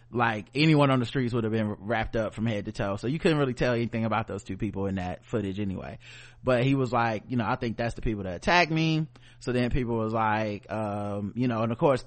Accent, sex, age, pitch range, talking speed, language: American, male, 20-39, 110-130 Hz, 265 wpm, English